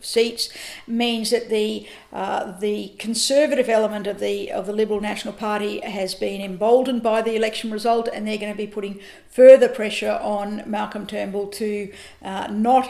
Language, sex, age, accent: English, female, 50-69, Australian